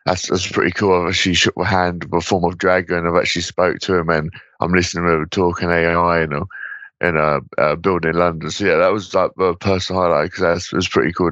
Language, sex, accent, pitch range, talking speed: English, male, British, 85-95 Hz, 250 wpm